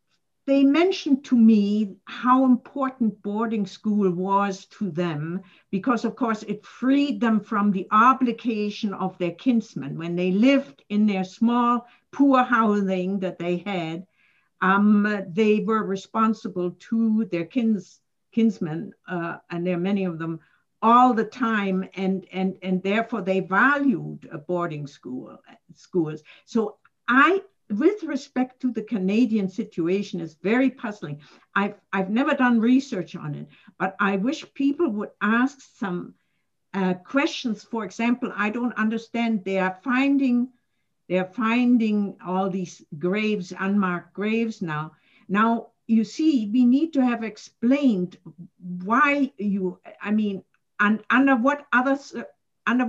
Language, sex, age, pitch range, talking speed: English, female, 60-79, 185-245 Hz, 140 wpm